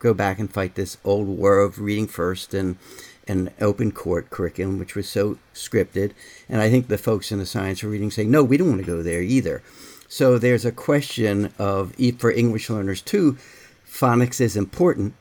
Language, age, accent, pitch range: English, 60-79, American, 100-125 Hz